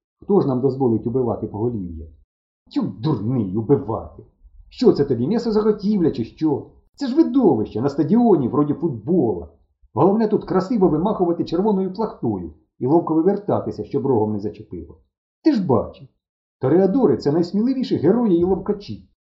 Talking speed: 145 wpm